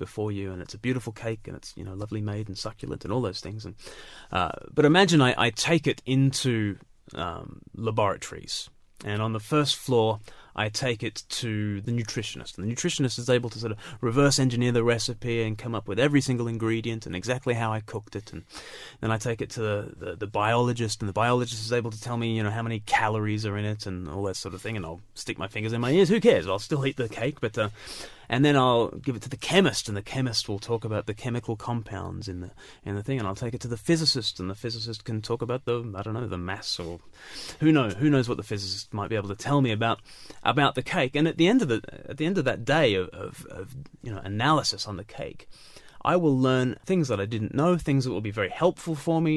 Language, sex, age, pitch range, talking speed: English, male, 30-49, 105-135 Hz, 260 wpm